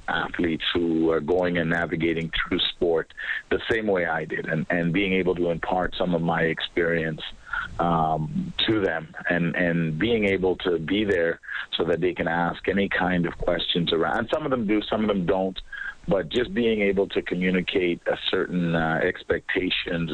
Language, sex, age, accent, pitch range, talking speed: English, male, 50-69, American, 85-100 Hz, 185 wpm